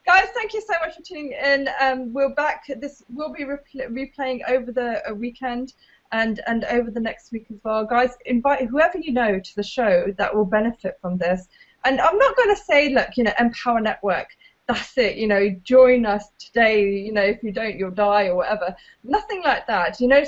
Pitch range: 210-270 Hz